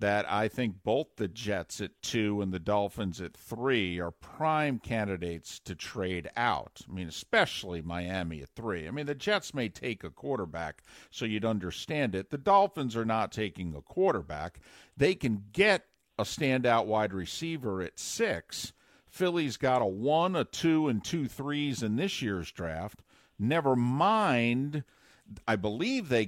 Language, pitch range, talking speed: English, 100-145 Hz, 160 wpm